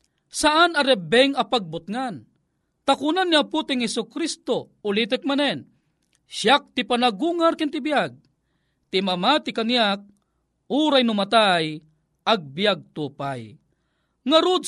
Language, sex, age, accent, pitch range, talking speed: Filipino, male, 40-59, native, 210-295 Hz, 100 wpm